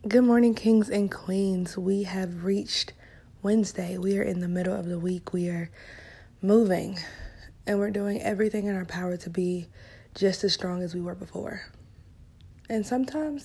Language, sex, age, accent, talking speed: English, female, 20-39, American, 170 wpm